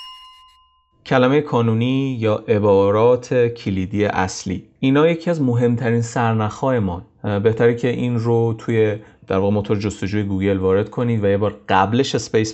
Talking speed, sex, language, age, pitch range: 140 wpm, male, Persian, 30-49, 100-125 Hz